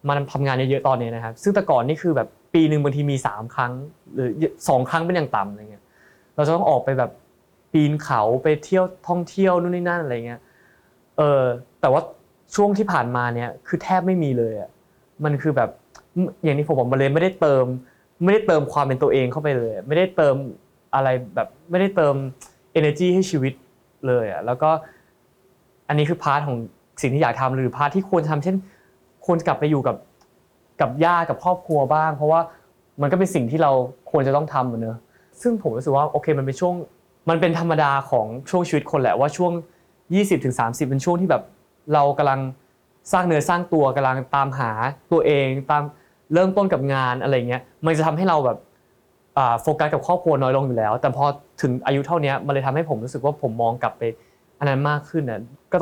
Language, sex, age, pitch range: Thai, male, 20-39, 130-170 Hz